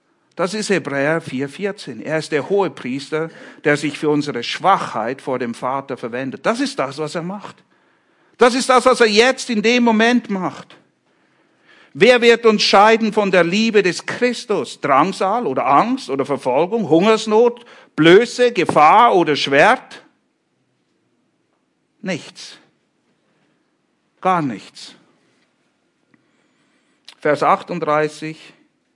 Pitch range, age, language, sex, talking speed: 145-230 Hz, 60-79, English, male, 120 wpm